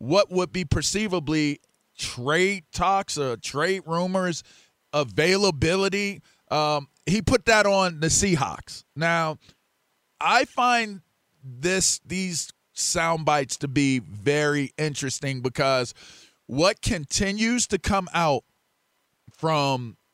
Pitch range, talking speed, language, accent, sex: 130-190 Hz, 105 wpm, English, American, male